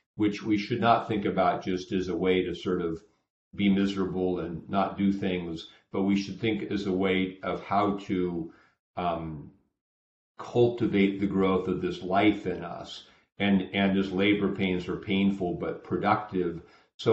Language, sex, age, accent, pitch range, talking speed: English, male, 50-69, American, 90-100 Hz, 170 wpm